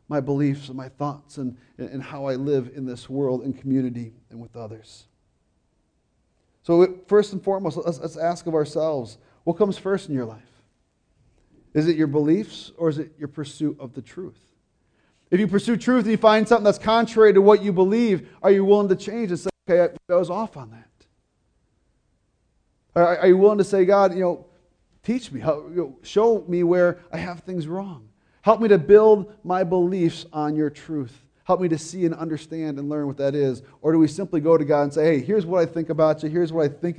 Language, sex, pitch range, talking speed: English, male, 135-185 Hz, 220 wpm